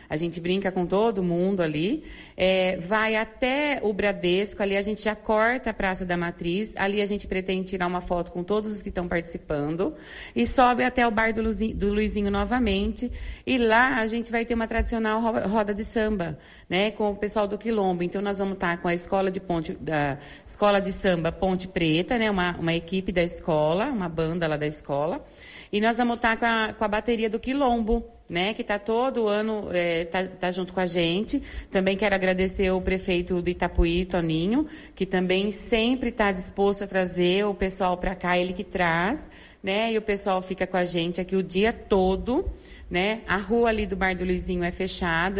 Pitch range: 175-215 Hz